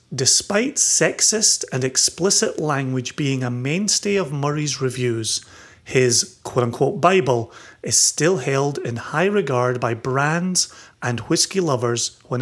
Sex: male